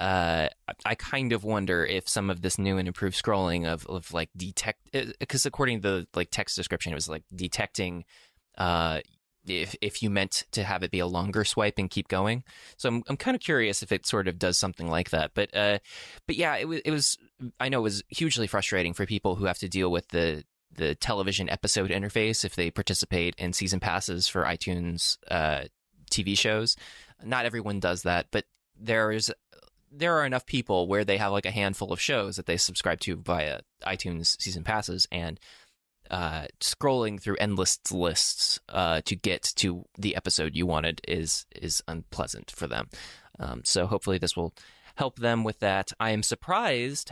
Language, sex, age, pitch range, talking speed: English, male, 20-39, 90-110 Hz, 195 wpm